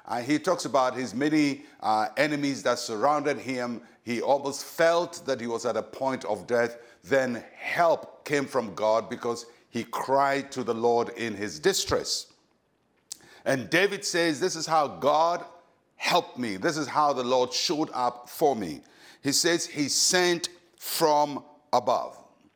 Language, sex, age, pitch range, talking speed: English, male, 50-69, 125-155 Hz, 160 wpm